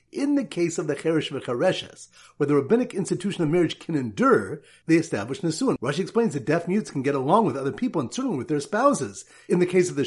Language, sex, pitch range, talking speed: English, male, 140-195 Hz, 230 wpm